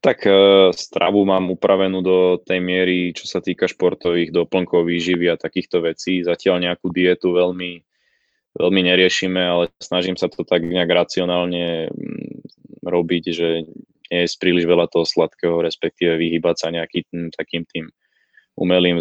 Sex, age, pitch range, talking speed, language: male, 20-39, 85-90 Hz, 140 wpm, Slovak